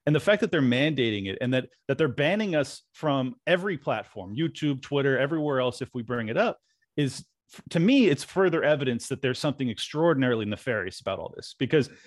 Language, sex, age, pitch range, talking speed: English, male, 30-49, 120-150 Hz, 190 wpm